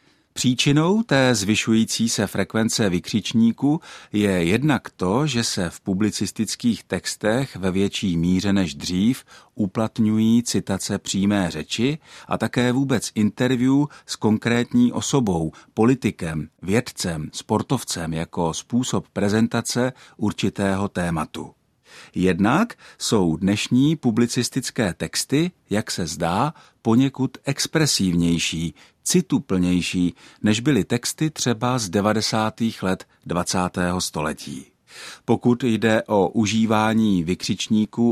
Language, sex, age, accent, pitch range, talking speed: Czech, male, 50-69, native, 95-130 Hz, 100 wpm